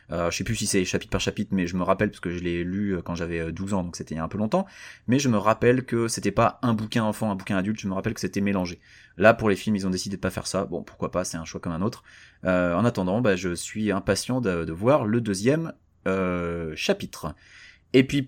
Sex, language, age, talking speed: male, French, 30-49, 280 wpm